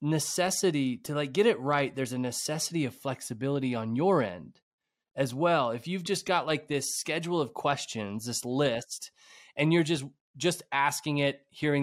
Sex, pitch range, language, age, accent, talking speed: male, 125-155 Hz, English, 20-39, American, 170 wpm